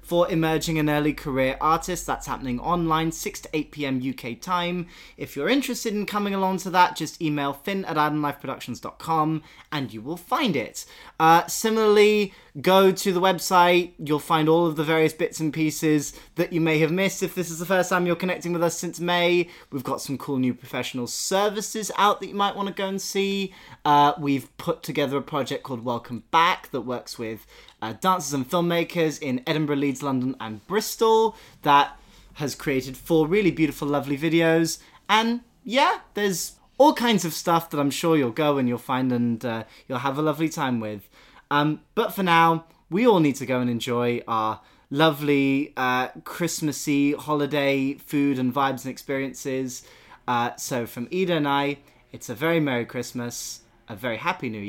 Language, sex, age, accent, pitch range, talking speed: English, male, 20-39, British, 135-175 Hz, 185 wpm